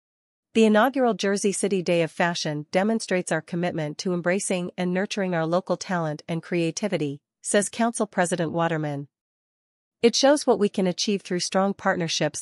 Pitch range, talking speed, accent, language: 160-195 Hz, 155 wpm, American, English